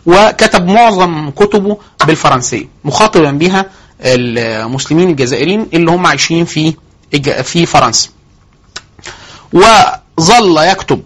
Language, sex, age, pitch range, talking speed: Arabic, male, 30-49, 130-185 Hz, 85 wpm